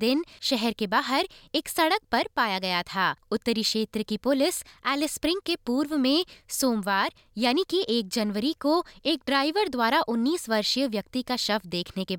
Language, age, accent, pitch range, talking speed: Hindi, 20-39, native, 215-315 Hz, 165 wpm